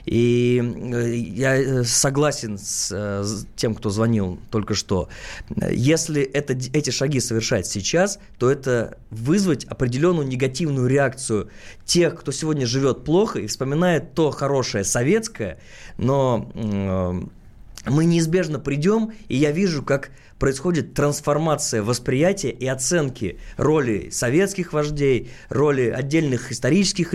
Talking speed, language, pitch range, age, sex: 110 wpm, Russian, 115-165 Hz, 20-39, male